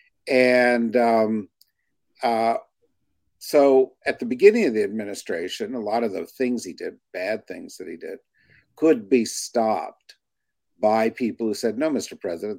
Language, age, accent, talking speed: English, 50-69, American, 155 wpm